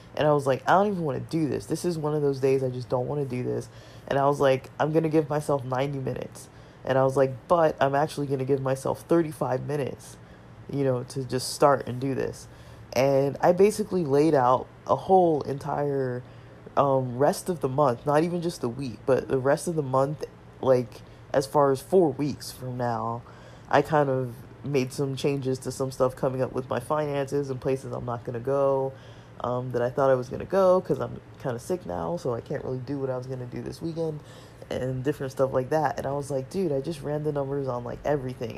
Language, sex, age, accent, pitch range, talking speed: English, male, 20-39, American, 125-150 Hz, 240 wpm